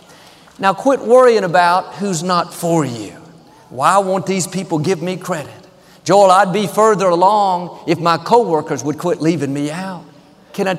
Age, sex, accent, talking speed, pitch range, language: 50-69, male, American, 165 wpm, 165-210 Hz, English